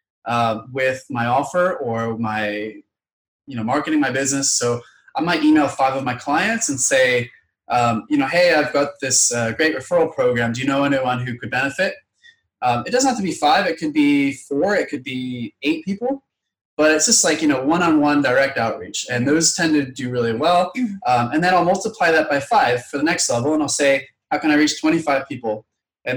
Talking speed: 215 wpm